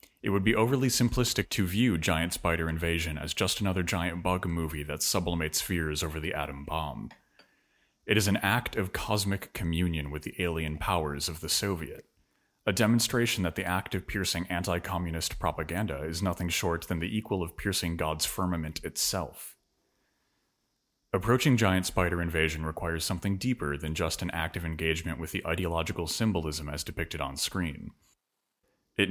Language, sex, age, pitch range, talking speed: English, male, 30-49, 80-105 Hz, 165 wpm